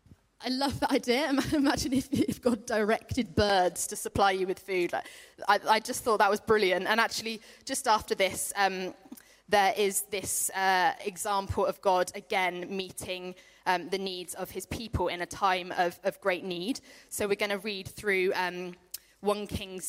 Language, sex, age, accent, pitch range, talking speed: English, female, 20-39, British, 180-225 Hz, 175 wpm